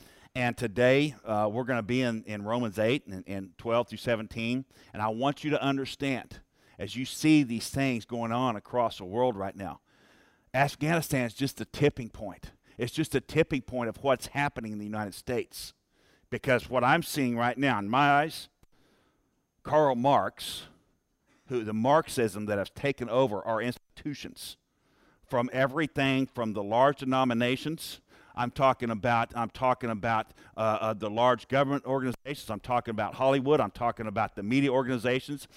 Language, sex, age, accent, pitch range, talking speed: English, male, 50-69, American, 115-145 Hz, 170 wpm